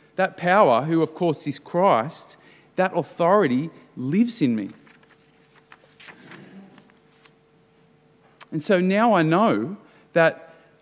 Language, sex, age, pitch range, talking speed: English, male, 40-59, 155-190 Hz, 100 wpm